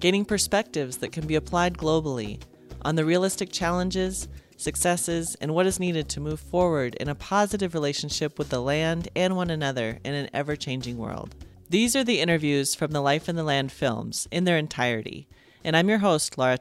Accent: American